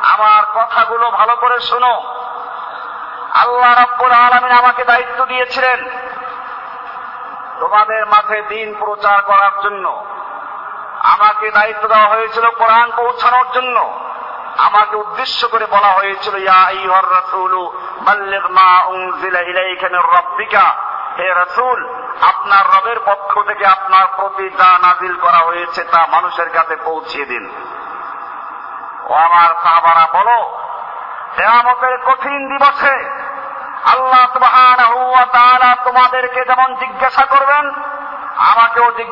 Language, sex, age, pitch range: Bengali, male, 50-69, 200-255 Hz